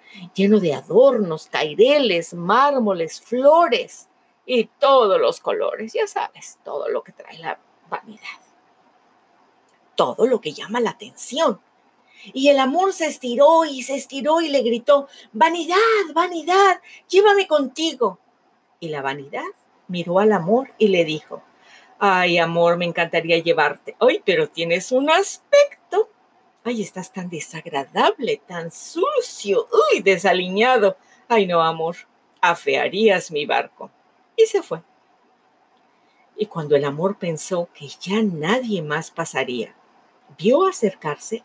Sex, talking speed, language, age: female, 125 wpm, Spanish, 40-59